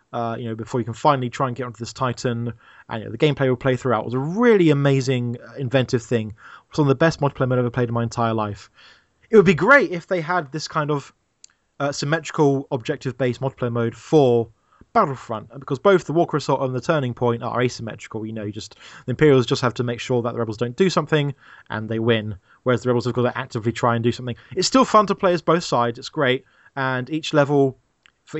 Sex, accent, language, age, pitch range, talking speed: male, British, English, 20-39, 120-145 Hz, 245 wpm